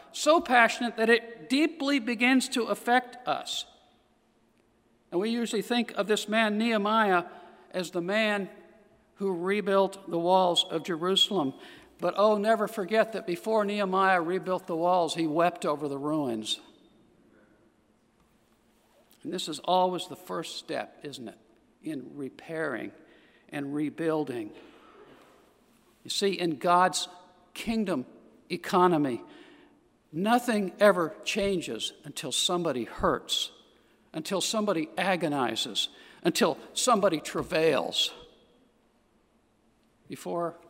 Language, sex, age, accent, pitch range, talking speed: English, male, 60-79, American, 160-210 Hz, 110 wpm